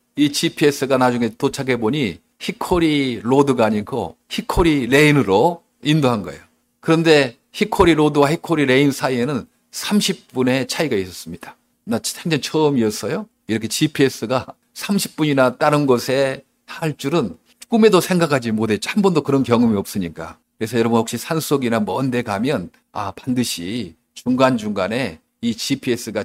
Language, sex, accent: Korean, male, native